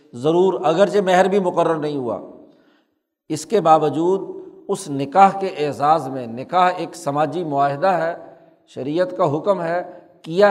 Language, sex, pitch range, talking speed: Urdu, male, 155-190 Hz, 145 wpm